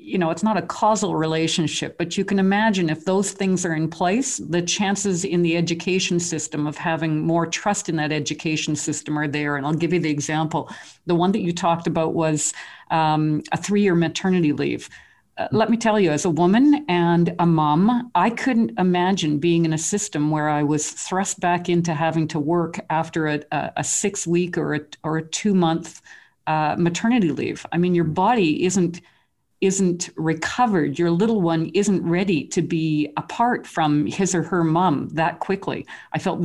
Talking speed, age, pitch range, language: 185 wpm, 50-69, 155-190 Hz, English